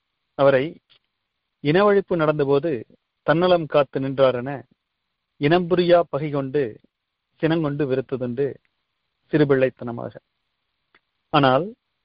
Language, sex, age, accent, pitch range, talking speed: Tamil, male, 40-59, native, 130-155 Hz, 60 wpm